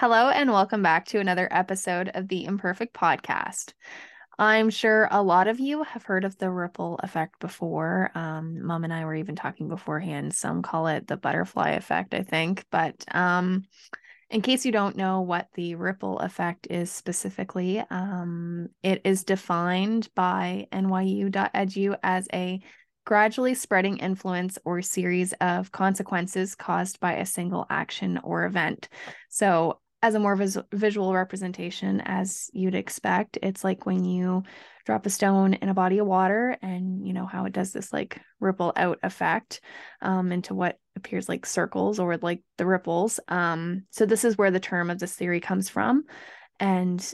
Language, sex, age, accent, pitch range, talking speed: English, female, 20-39, American, 175-195 Hz, 165 wpm